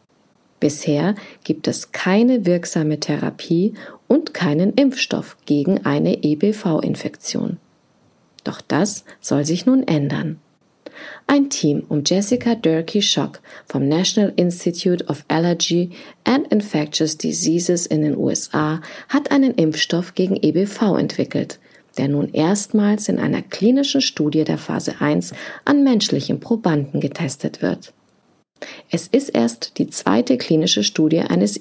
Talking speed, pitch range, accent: 120 wpm, 155-230 Hz, German